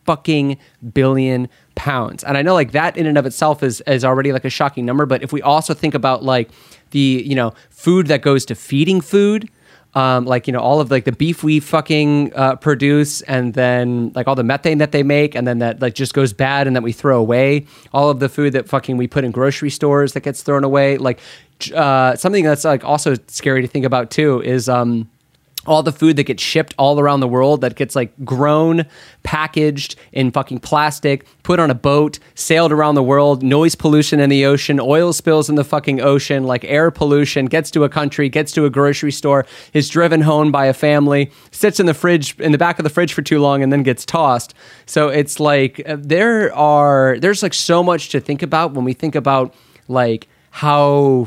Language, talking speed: English, 220 wpm